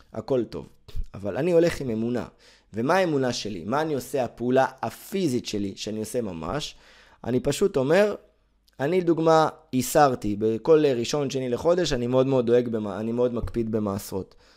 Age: 20-39